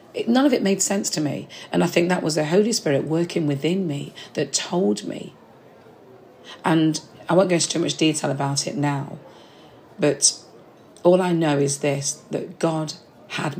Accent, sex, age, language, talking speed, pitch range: British, female, 40-59, English, 180 wpm, 140-170 Hz